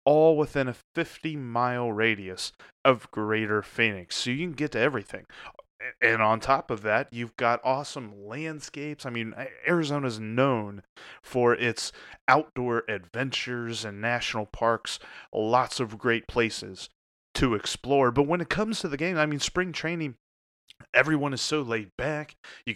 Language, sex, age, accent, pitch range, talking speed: English, male, 30-49, American, 110-135 Hz, 150 wpm